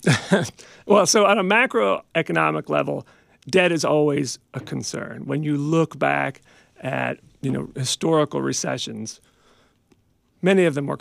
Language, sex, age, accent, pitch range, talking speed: English, male, 40-59, American, 125-165 Hz, 130 wpm